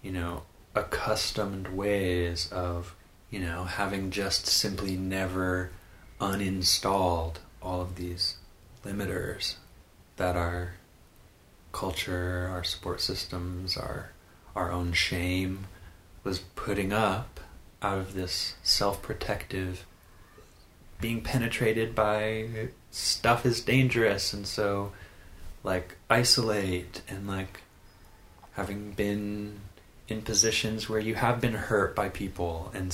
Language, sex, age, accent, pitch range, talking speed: English, male, 30-49, American, 85-100 Hz, 105 wpm